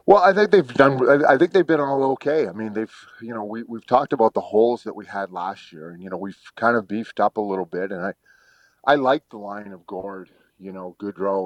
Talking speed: 255 wpm